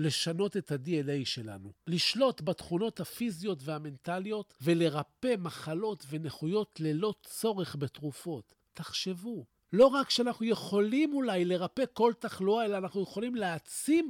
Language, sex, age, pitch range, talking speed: Hebrew, male, 50-69, 155-230 Hz, 115 wpm